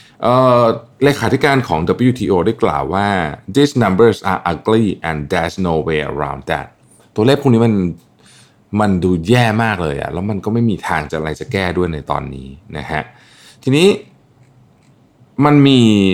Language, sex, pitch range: Thai, male, 80-125 Hz